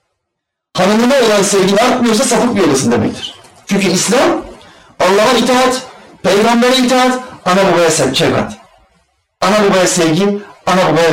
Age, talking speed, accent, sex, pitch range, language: 40-59, 125 wpm, native, male, 165-225 Hz, Turkish